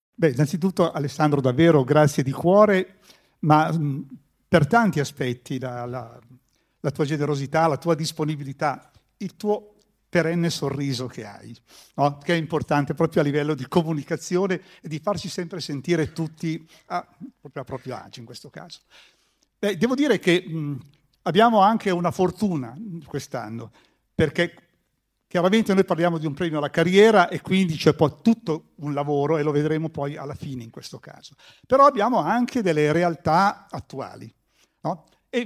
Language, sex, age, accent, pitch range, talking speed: Italian, male, 50-69, native, 145-195 Hz, 145 wpm